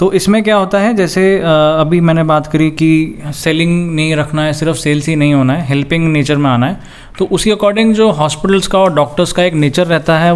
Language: Hindi